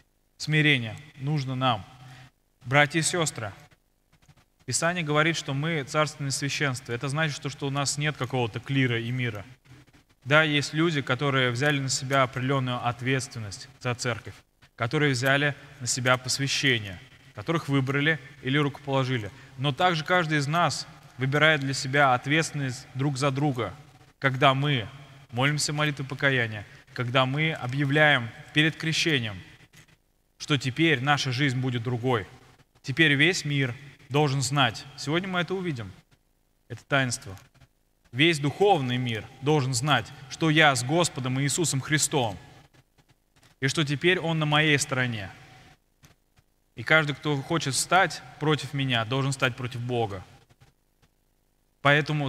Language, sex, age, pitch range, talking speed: Russian, male, 20-39, 130-150 Hz, 130 wpm